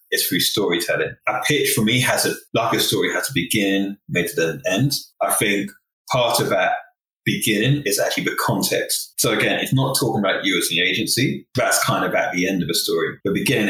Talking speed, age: 220 wpm, 20-39